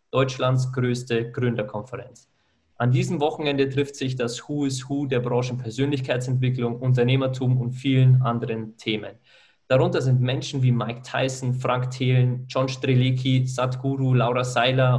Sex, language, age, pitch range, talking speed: male, German, 20-39, 120-135 Hz, 130 wpm